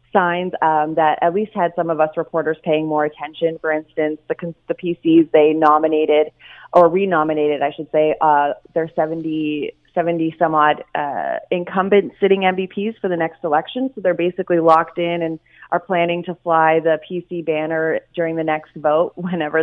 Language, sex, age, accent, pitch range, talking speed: English, female, 30-49, American, 155-175 Hz, 175 wpm